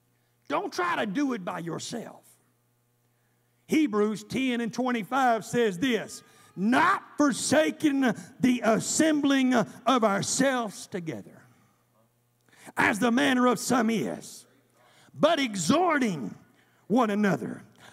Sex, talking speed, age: male, 100 wpm, 50-69